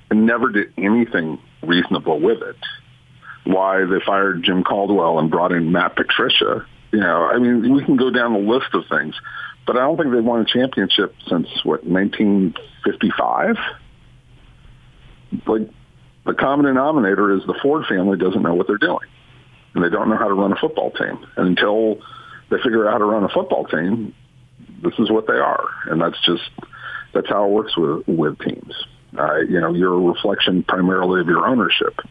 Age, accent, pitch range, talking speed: 50-69, American, 100-130 Hz, 185 wpm